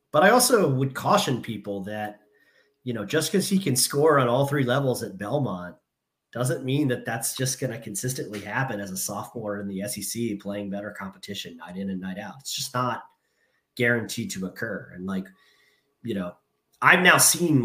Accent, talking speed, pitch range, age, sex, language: American, 190 wpm, 105-135 Hz, 30-49, male, English